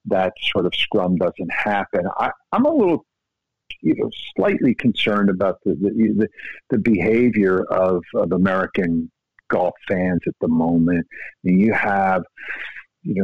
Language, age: English, 50-69